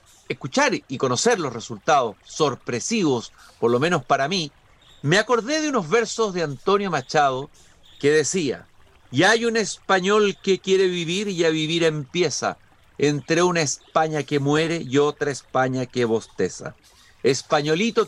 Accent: Mexican